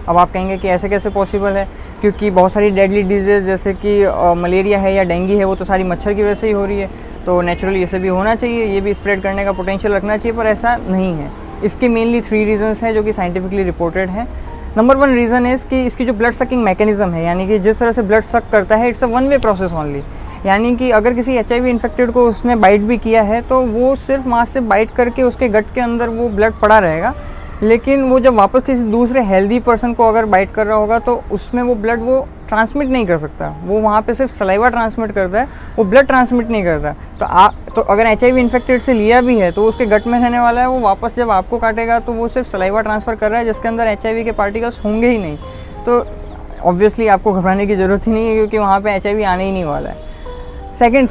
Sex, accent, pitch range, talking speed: female, native, 195-240 Hz, 245 wpm